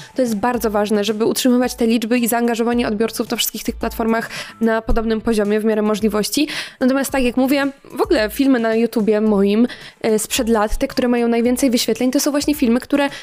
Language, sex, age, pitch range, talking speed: Polish, female, 20-39, 225-260 Hz, 200 wpm